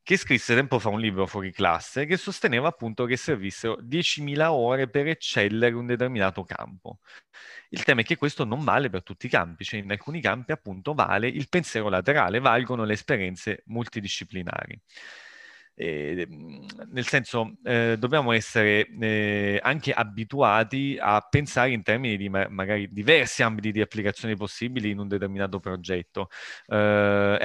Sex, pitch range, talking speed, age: male, 105-135 Hz, 155 wpm, 30-49